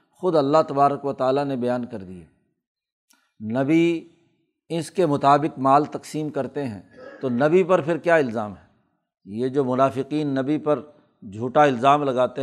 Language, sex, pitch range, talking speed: Urdu, male, 135-155 Hz, 155 wpm